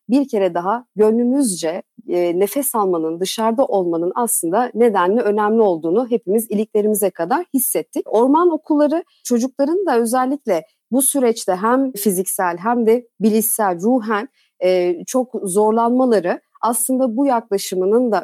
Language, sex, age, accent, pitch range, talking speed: Turkish, female, 40-59, native, 185-265 Hz, 120 wpm